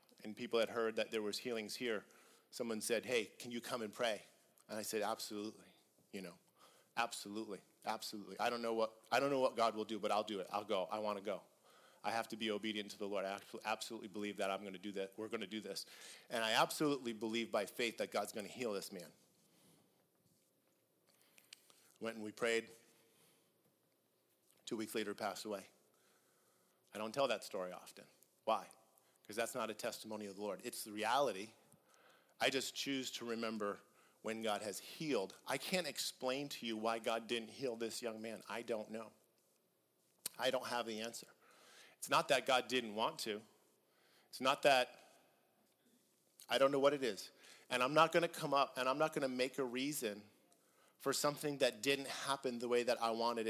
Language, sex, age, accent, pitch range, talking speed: English, male, 40-59, American, 110-130 Hz, 200 wpm